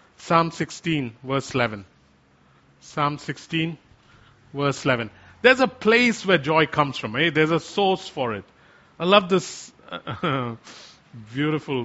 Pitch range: 135-220 Hz